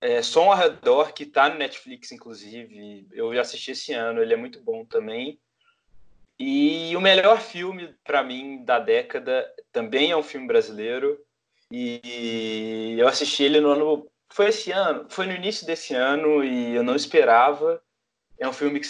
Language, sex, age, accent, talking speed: Portuguese, male, 20-39, Brazilian, 170 wpm